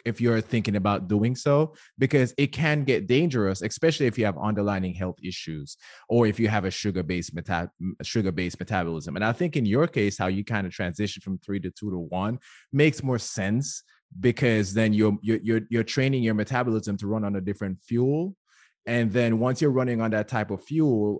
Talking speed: 205 wpm